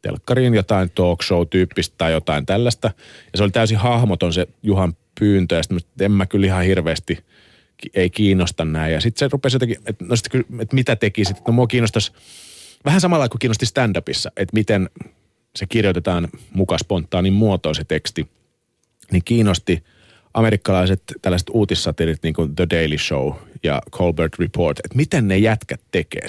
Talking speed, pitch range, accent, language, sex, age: 160 wpm, 85-115 Hz, native, Finnish, male, 30-49